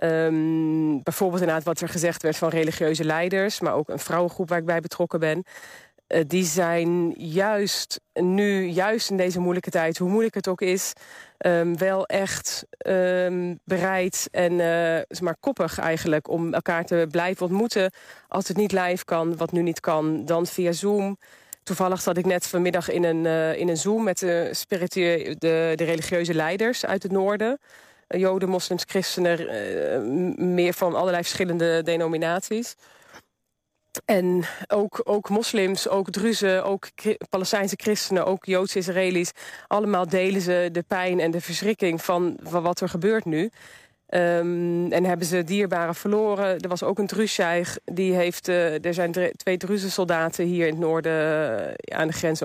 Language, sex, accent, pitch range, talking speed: Dutch, female, Dutch, 170-195 Hz, 155 wpm